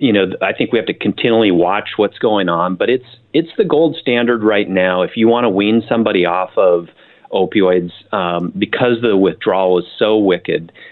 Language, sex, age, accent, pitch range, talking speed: English, male, 30-49, American, 85-95 Hz, 200 wpm